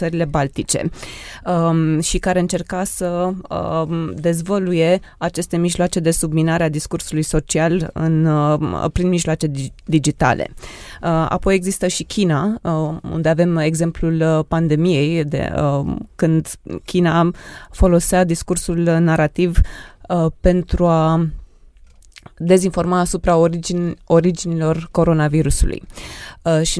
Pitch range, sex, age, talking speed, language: 160-180 Hz, female, 20-39, 85 wpm, Romanian